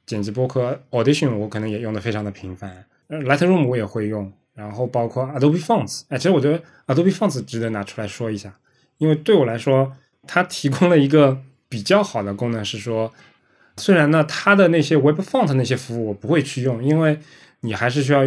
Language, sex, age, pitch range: Chinese, male, 20-39, 115-150 Hz